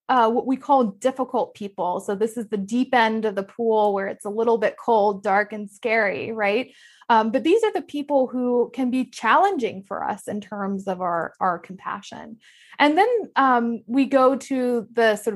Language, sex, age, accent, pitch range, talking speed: English, female, 20-39, American, 200-240 Hz, 200 wpm